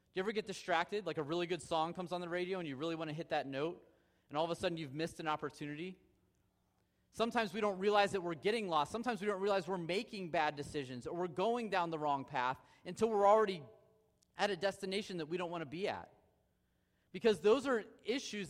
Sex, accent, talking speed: male, American, 225 wpm